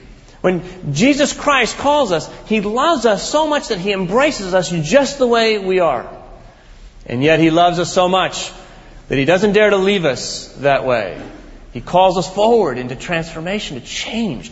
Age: 40-59